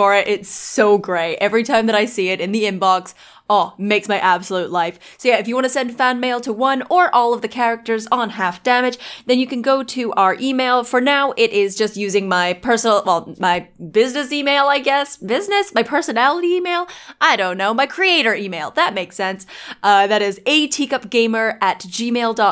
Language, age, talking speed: English, 20-39, 195 wpm